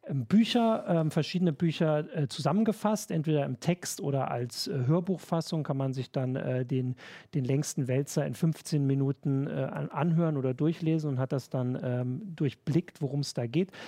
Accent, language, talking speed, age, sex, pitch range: German, German, 170 wpm, 40-59, male, 135-165 Hz